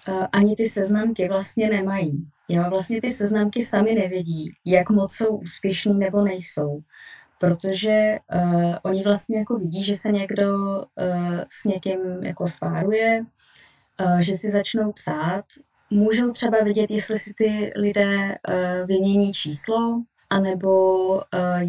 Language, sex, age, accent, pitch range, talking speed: Czech, female, 20-39, native, 170-195 Hz, 135 wpm